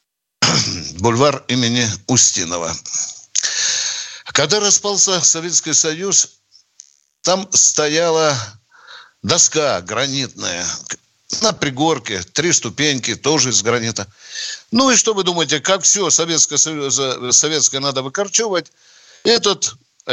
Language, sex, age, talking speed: Russian, male, 60-79, 90 wpm